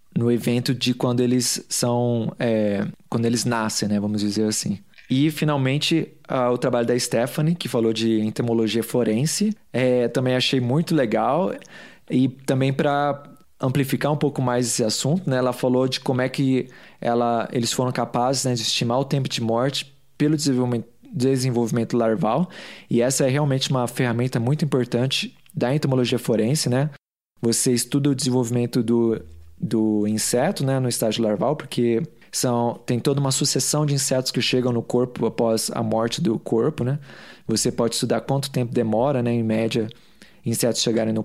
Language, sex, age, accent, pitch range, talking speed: Portuguese, male, 20-39, Brazilian, 120-145 Hz, 165 wpm